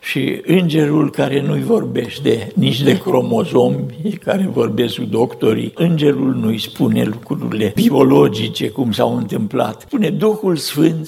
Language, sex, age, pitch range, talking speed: Romanian, male, 60-79, 120-165 Hz, 125 wpm